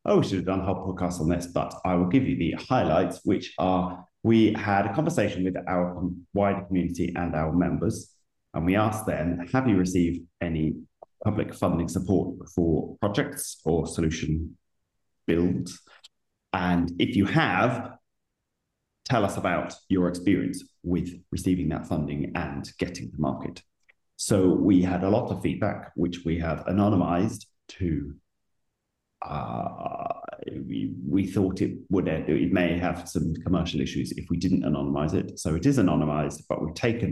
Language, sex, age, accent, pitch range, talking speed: English, male, 30-49, British, 80-95 Hz, 160 wpm